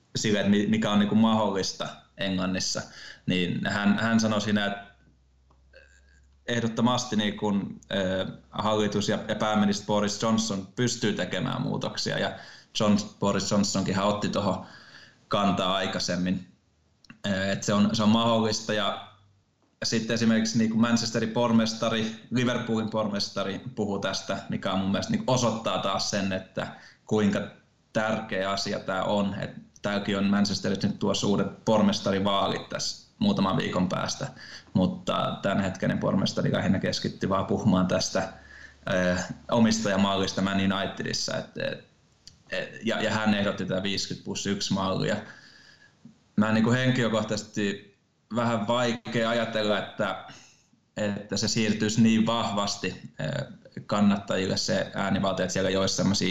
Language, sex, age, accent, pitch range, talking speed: Finnish, male, 20-39, native, 95-110 Hz, 125 wpm